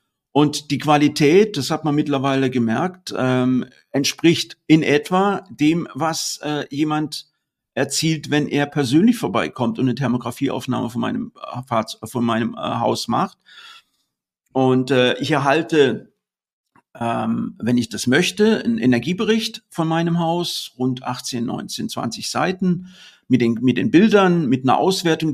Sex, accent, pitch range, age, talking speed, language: male, German, 125-160 Hz, 50-69, 135 wpm, German